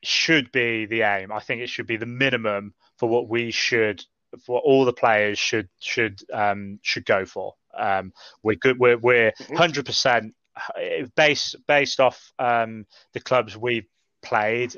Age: 20-39